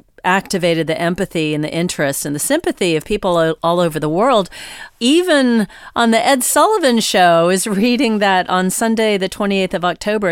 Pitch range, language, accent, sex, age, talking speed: 160-205 Hz, English, American, female, 40-59, 175 wpm